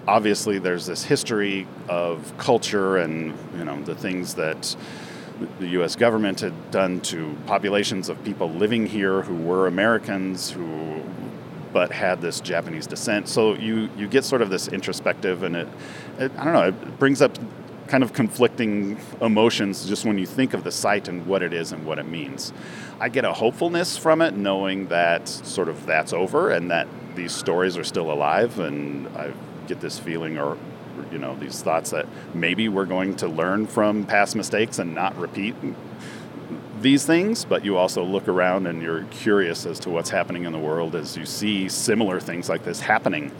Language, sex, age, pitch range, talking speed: English, male, 40-59, 90-110 Hz, 185 wpm